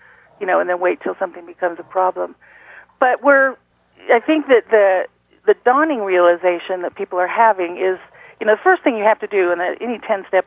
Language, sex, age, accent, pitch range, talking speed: English, female, 40-59, American, 185-225 Hz, 205 wpm